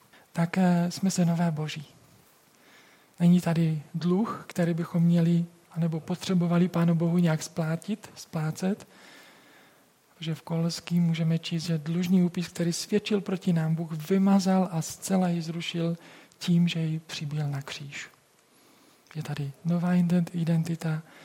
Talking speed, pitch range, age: 130 wpm, 155-180 Hz, 40-59